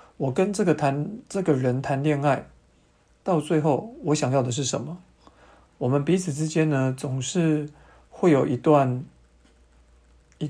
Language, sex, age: Chinese, male, 50-69